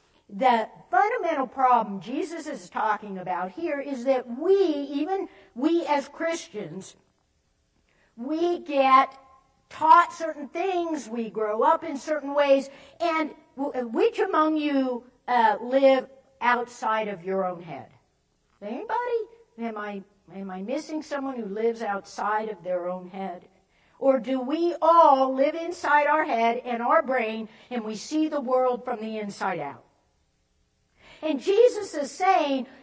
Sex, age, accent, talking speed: female, 60-79, American, 135 wpm